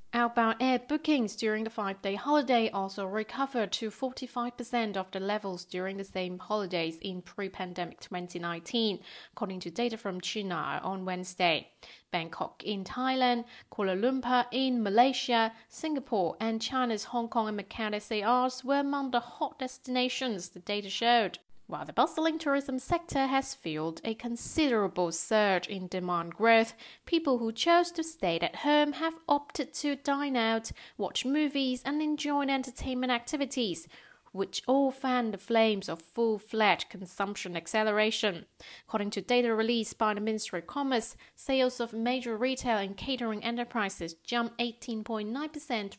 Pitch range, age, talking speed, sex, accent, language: 195-255 Hz, 30-49, 140 wpm, female, British, English